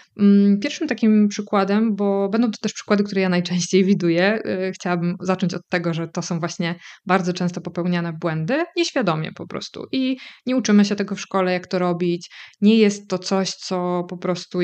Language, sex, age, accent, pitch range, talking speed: Polish, female, 20-39, native, 175-210 Hz, 180 wpm